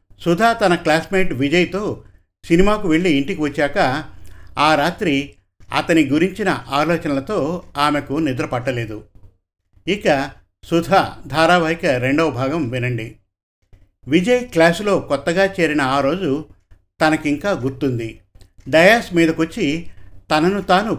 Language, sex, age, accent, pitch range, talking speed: Telugu, male, 50-69, native, 130-175 Hz, 90 wpm